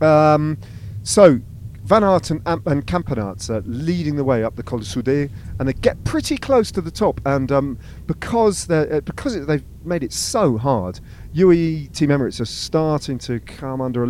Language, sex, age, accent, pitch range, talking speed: English, male, 40-59, British, 110-145 Hz, 180 wpm